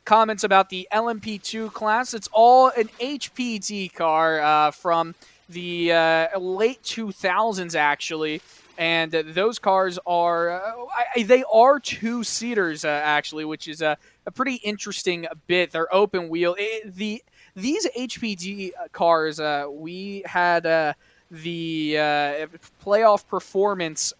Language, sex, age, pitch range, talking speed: English, male, 20-39, 160-200 Hz, 125 wpm